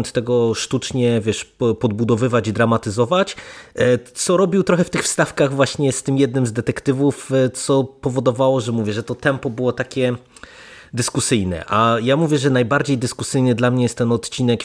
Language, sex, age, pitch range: Polish, male, 30-49, 110-130 Hz